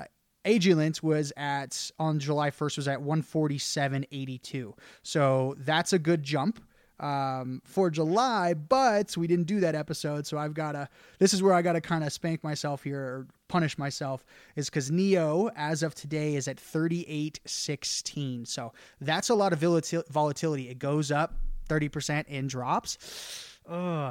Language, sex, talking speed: English, male, 155 wpm